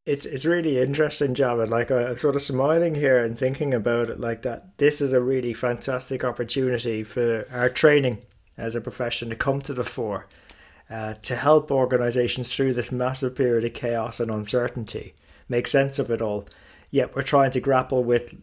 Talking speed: 190 wpm